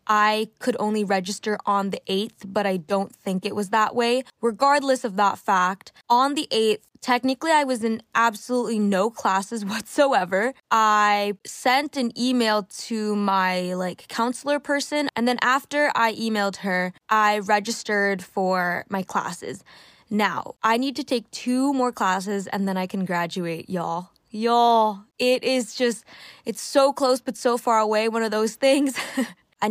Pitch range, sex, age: 200-255 Hz, female, 10-29